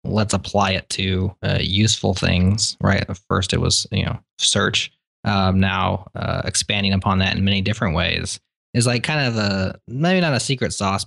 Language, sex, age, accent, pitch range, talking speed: English, male, 20-39, American, 100-125 Hz, 190 wpm